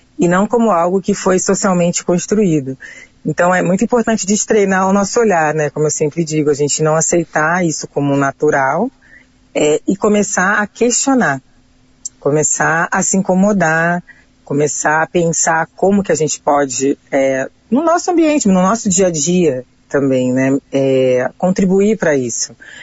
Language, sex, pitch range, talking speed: Portuguese, female, 145-185 Hz, 160 wpm